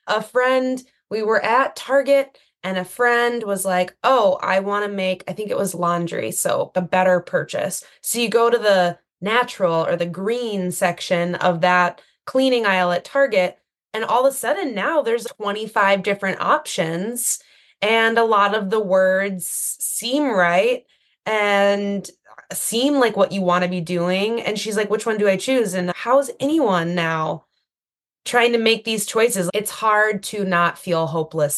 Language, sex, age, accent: English, female, 20-39, American